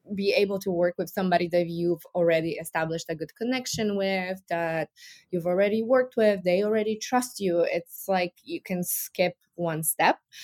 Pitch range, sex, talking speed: 170-210 Hz, female, 170 wpm